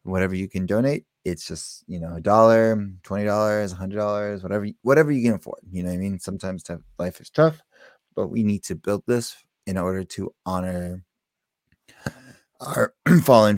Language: English